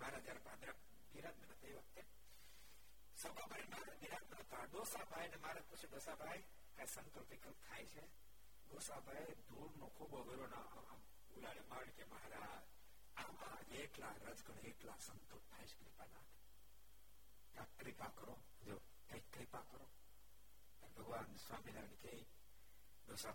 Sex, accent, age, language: male, native, 60-79, Gujarati